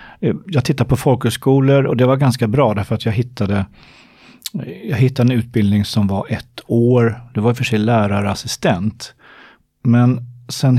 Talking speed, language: 155 wpm, Swedish